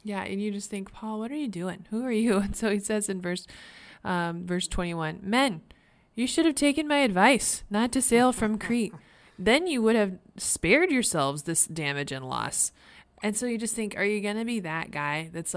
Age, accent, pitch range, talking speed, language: 20-39, American, 170-225 Hz, 220 wpm, English